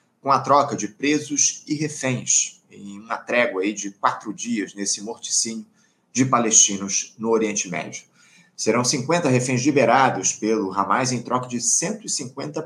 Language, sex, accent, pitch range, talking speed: Portuguese, male, Brazilian, 110-140 Hz, 140 wpm